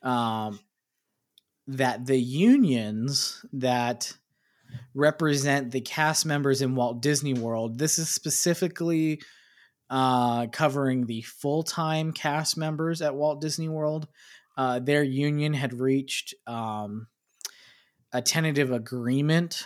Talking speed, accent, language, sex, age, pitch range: 105 wpm, American, English, male, 20-39, 120-145 Hz